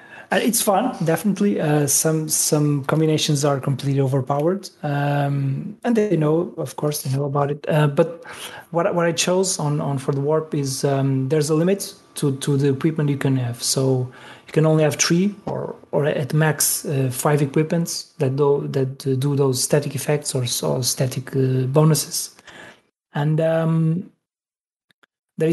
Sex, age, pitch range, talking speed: male, 30-49, 140-165 Hz, 165 wpm